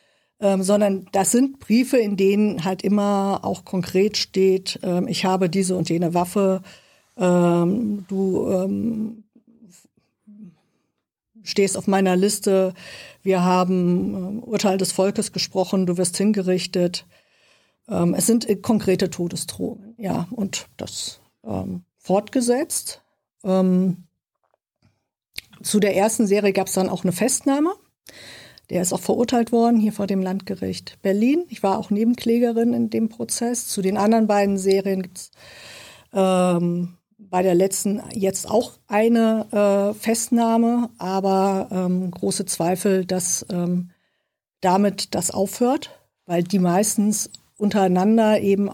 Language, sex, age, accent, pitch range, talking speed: German, female, 50-69, German, 185-220 Hz, 125 wpm